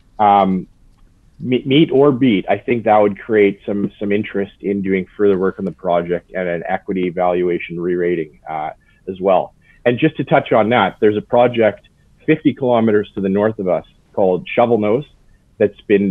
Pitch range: 95-105 Hz